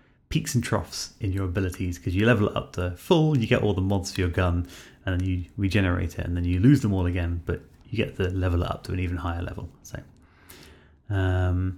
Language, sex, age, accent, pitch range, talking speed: English, male, 30-49, British, 90-115 Hz, 225 wpm